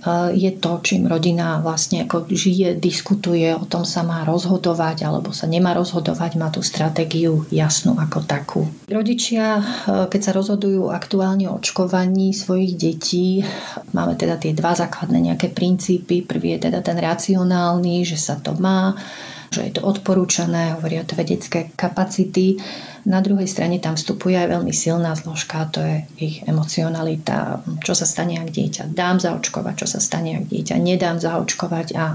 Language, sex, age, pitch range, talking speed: Slovak, female, 30-49, 165-190 Hz, 155 wpm